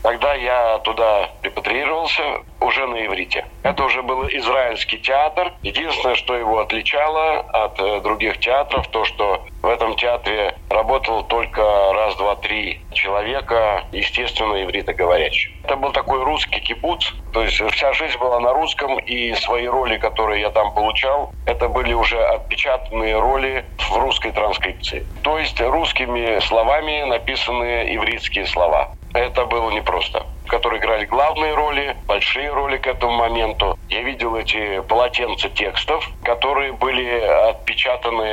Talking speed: 130 wpm